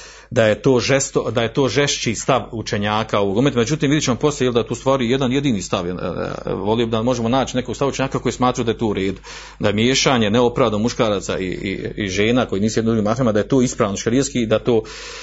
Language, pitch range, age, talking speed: Croatian, 115-155 Hz, 40-59, 230 wpm